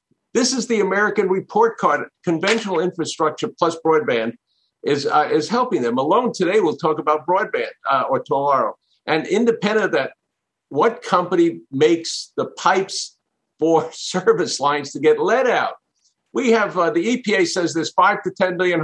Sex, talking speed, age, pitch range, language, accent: male, 165 wpm, 50-69, 150-205 Hz, English, American